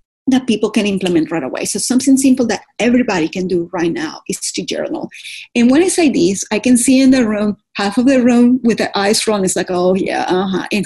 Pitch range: 200-275 Hz